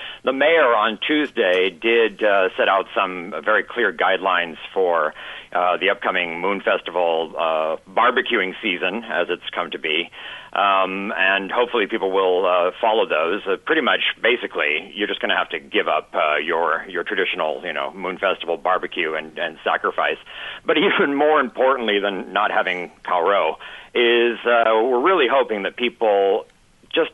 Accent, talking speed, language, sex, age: American, 165 wpm, English, male, 50-69